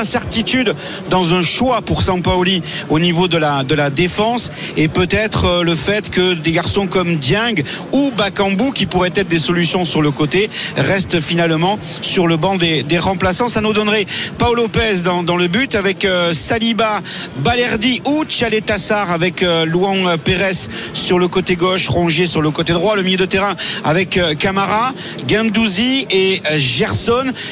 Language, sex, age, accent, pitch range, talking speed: French, male, 50-69, French, 165-205 Hz, 160 wpm